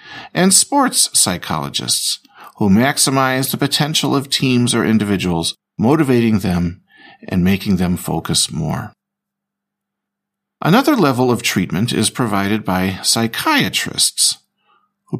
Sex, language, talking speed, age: male, Slovak, 105 wpm, 50-69